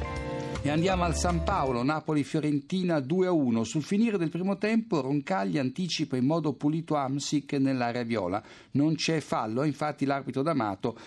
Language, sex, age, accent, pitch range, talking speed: Italian, male, 50-69, native, 130-165 Hz, 140 wpm